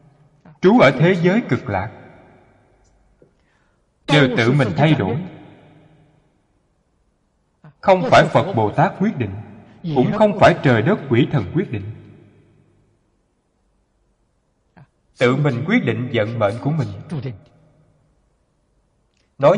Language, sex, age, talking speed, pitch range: Vietnamese, male, 20-39, 110 wpm, 120-160 Hz